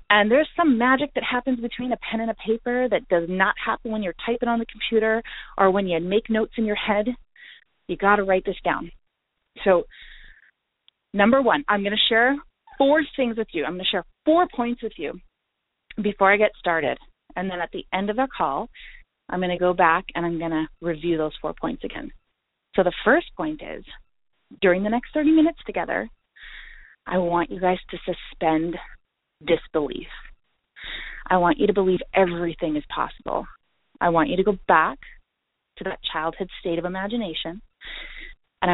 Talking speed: 185 wpm